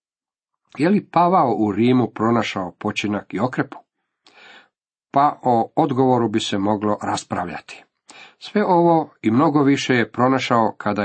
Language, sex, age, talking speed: Croatian, male, 40-59, 130 wpm